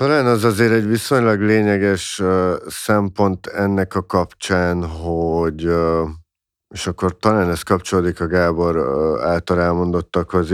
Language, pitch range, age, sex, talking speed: Hungarian, 80-95 Hz, 50-69, male, 115 wpm